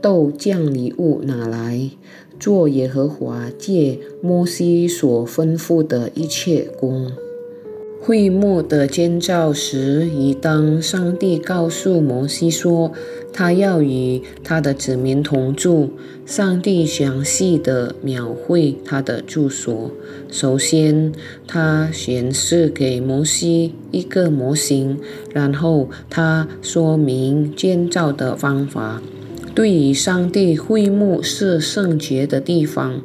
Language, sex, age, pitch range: Indonesian, female, 20-39, 130-175 Hz